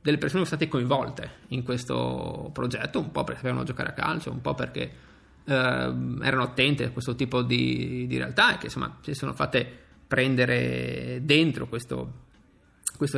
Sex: male